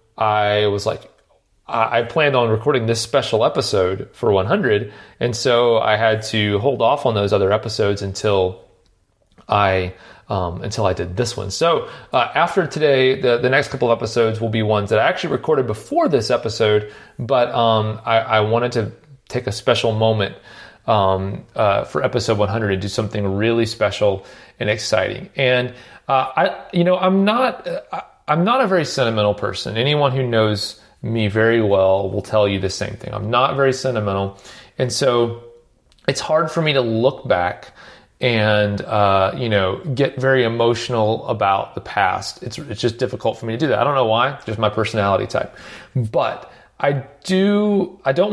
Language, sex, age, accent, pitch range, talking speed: English, male, 30-49, American, 105-130 Hz, 180 wpm